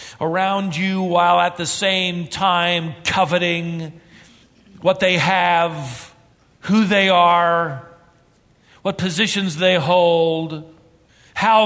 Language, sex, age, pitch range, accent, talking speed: English, male, 50-69, 155-215 Hz, American, 100 wpm